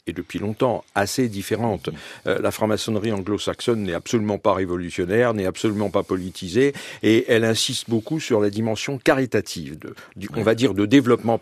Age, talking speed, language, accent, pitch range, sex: 50-69, 170 wpm, French, French, 105-145 Hz, male